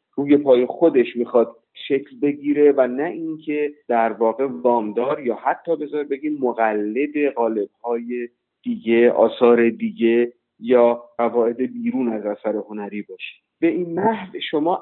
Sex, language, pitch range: male, Persian, 120-155 Hz